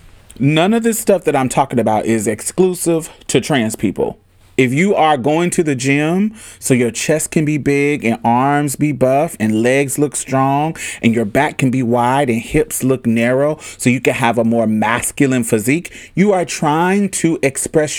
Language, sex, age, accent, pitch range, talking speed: English, male, 30-49, American, 115-155 Hz, 190 wpm